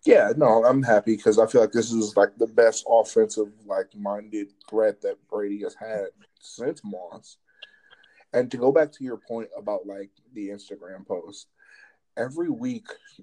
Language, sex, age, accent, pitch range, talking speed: English, male, 20-39, American, 100-160 Hz, 170 wpm